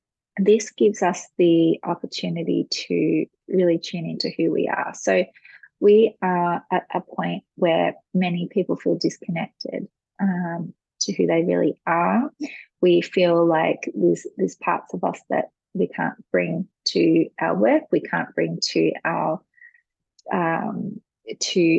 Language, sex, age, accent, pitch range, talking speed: English, female, 20-39, Australian, 175-220 Hz, 140 wpm